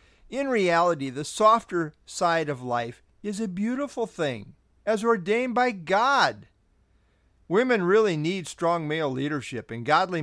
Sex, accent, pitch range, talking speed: male, American, 120-190 Hz, 135 wpm